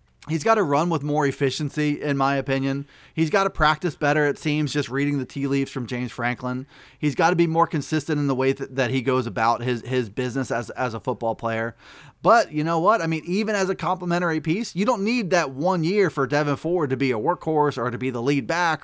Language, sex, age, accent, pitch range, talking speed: English, male, 30-49, American, 135-175 Hz, 240 wpm